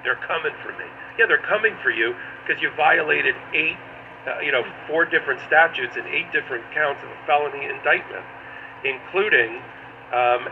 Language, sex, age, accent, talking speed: English, male, 50-69, American, 165 wpm